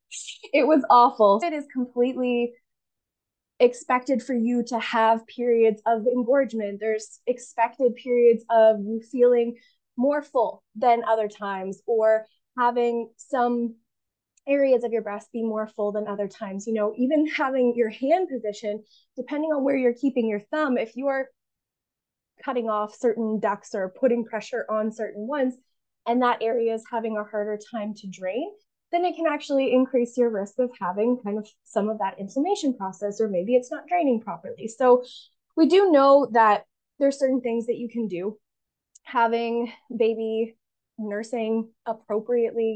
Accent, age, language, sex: American, 20-39, English, female